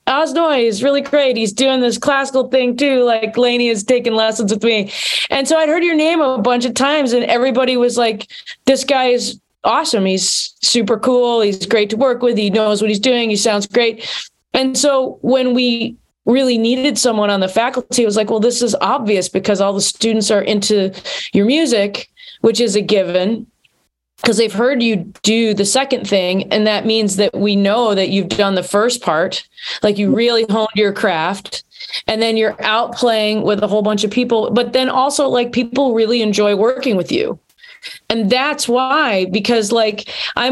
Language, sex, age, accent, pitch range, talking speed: English, female, 20-39, American, 210-250 Hz, 195 wpm